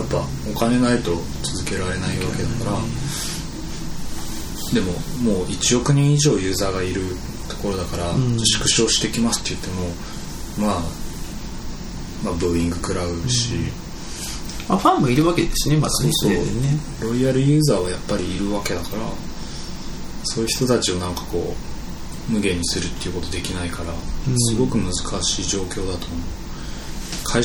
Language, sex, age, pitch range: Japanese, male, 20-39, 90-130 Hz